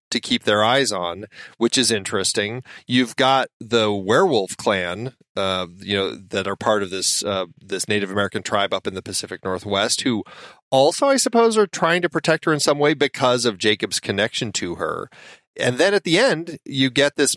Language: English